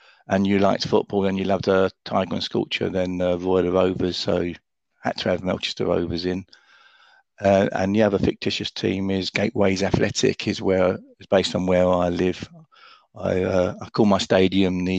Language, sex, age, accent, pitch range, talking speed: English, male, 50-69, British, 90-100 Hz, 190 wpm